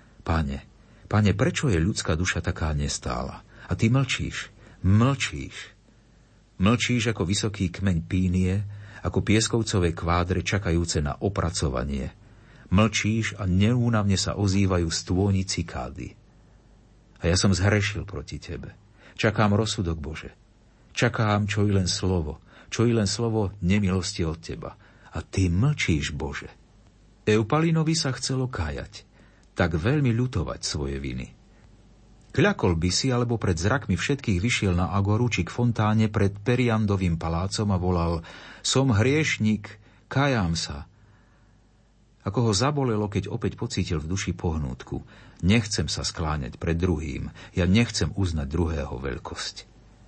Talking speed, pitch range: 125 wpm, 85-110 Hz